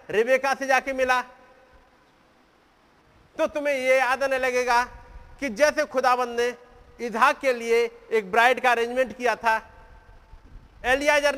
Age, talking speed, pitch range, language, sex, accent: 50-69, 120 wpm, 215-280 Hz, Hindi, male, native